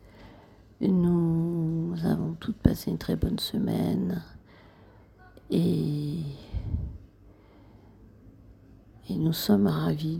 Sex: female